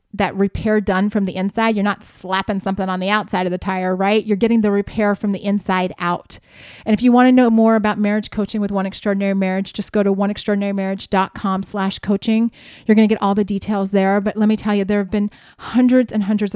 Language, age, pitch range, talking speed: English, 30-49, 195-225 Hz, 230 wpm